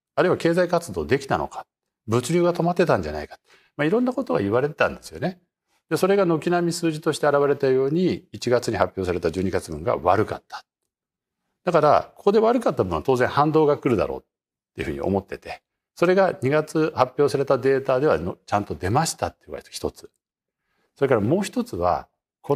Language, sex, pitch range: Japanese, male, 130-200 Hz